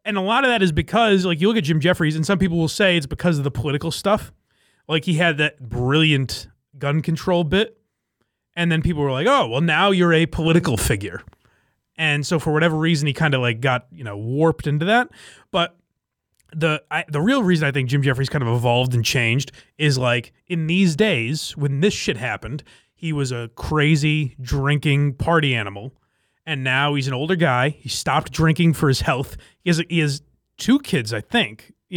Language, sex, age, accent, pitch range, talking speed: English, male, 30-49, American, 130-170 Hz, 205 wpm